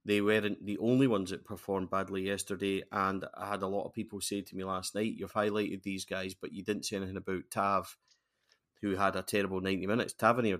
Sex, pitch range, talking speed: male, 100-115 Hz, 220 wpm